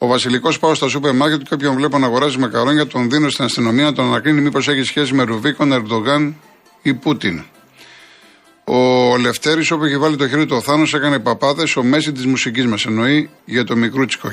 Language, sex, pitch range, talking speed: Greek, male, 115-145 Hz, 205 wpm